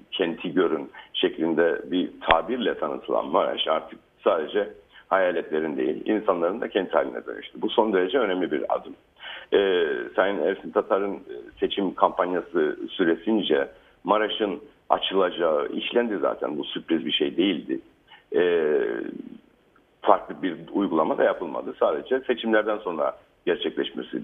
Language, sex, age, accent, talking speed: Turkish, male, 60-79, native, 120 wpm